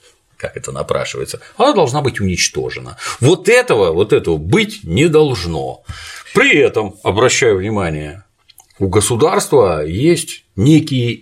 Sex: male